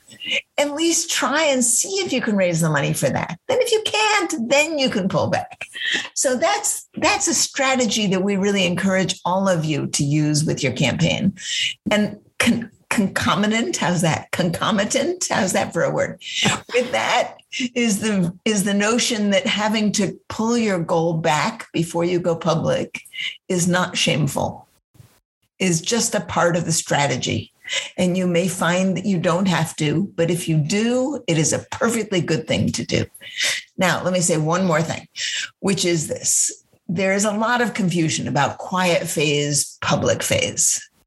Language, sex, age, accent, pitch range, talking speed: English, female, 50-69, American, 170-235 Hz, 175 wpm